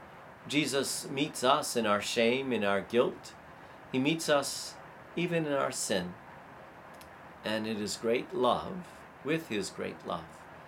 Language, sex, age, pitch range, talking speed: English, male, 50-69, 115-165 Hz, 140 wpm